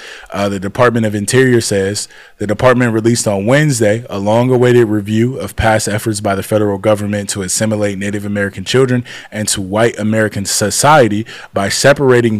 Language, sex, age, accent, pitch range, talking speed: English, male, 20-39, American, 105-120 Hz, 165 wpm